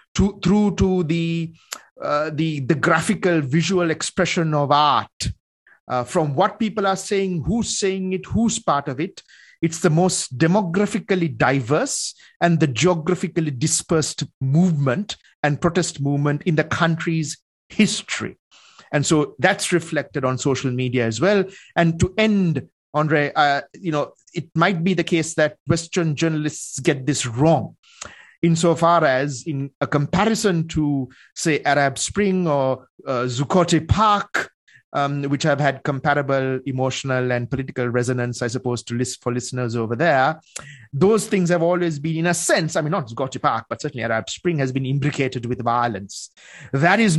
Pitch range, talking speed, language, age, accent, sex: 135-175 Hz, 155 wpm, English, 50-69, Indian, male